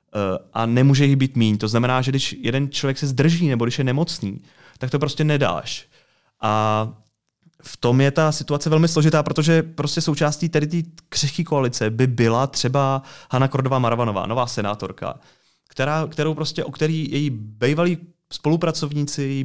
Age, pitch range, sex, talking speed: 30-49, 120-150 Hz, male, 155 wpm